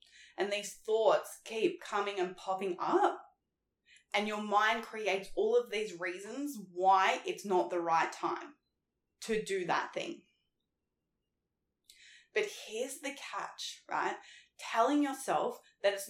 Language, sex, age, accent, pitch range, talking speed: English, female, 20-39, Australian, 190-285 Hz, 130 wpm